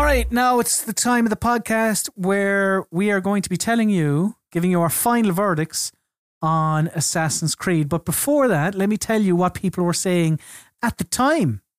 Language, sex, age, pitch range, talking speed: English, male, 30-49, 155-205 Hz, 200 wpm